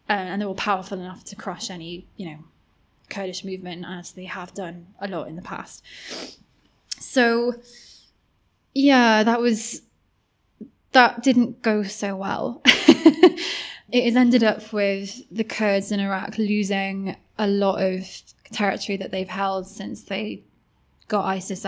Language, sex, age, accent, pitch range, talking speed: English, female, 20-39, British, 185-220 Hz, 145 wpm